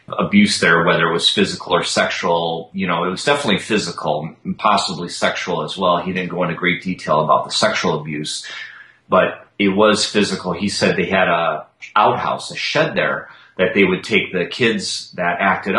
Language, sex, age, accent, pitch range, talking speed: English, male, 30-49, American, 90-140 Hz, 190 wpm